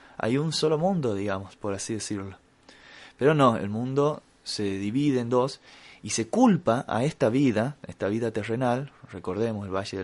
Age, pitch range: 20-39, 105-130 Hz